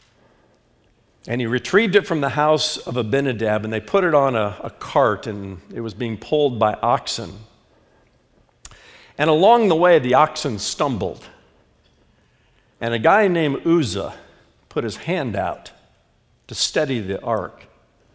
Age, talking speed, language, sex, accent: 50-69, 145 wpm, English, male, American